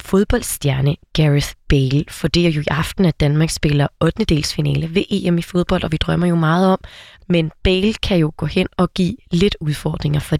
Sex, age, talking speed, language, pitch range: female, 20-39, 210 wpm, Danish, 150-185 Hz